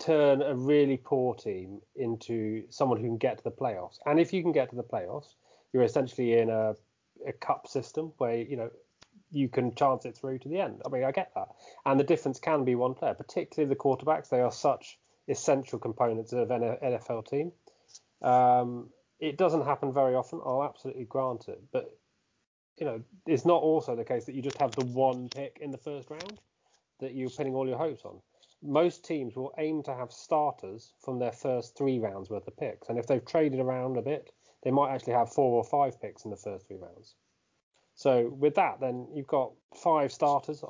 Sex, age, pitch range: male, 30-49, 125-145 Hz